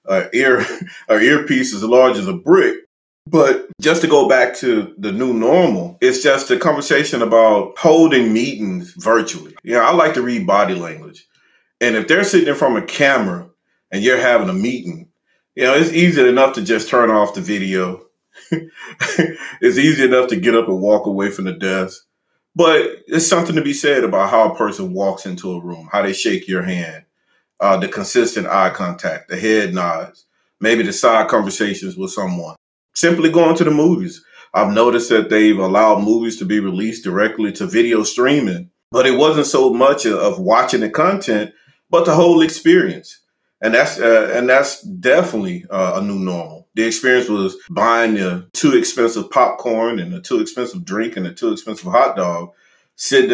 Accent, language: American, English